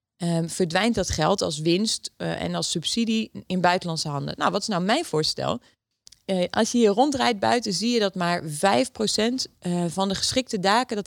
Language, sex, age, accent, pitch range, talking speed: Dutch, female, 30-49, Dutch, 175-235 Hz, 195 wpm